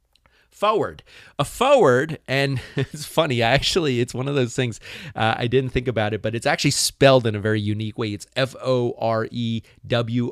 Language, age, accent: English, 30-49, American